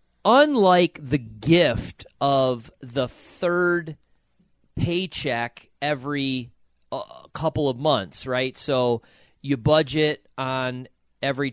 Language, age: English, 40-59